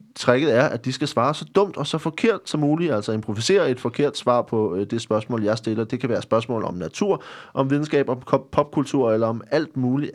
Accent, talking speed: native, 225 wpm